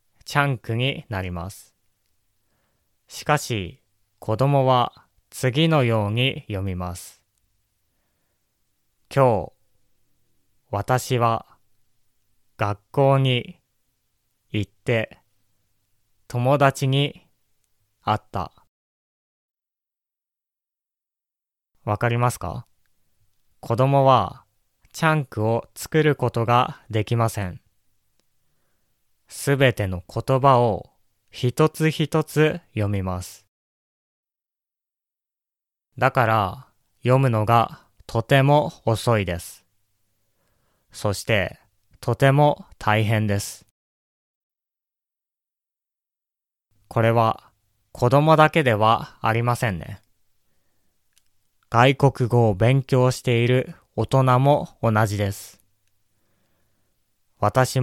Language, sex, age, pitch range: Japanese, male, 20-39, 105-130 Hz